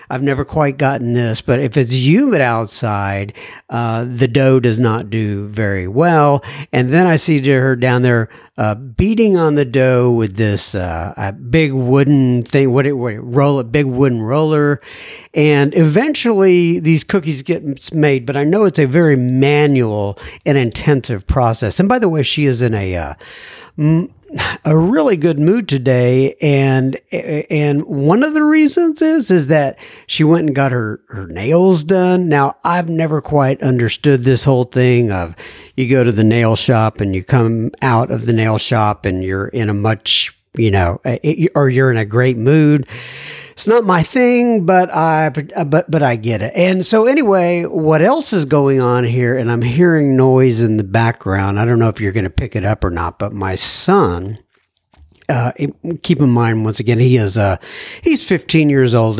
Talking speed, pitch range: 190 wpm, 115-155 Hz